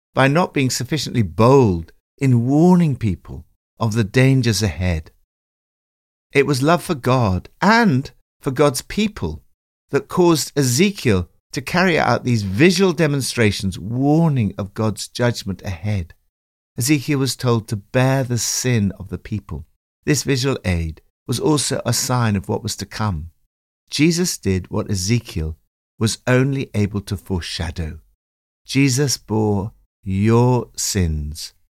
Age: 60-79